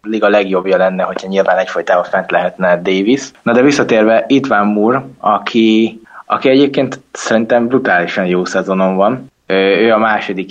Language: Hungarian